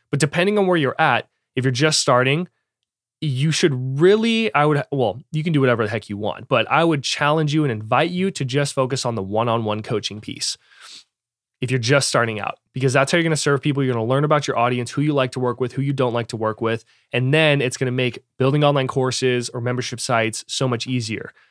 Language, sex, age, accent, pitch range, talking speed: English, male, 20-39, American, 120-155 Hz, 235 wpm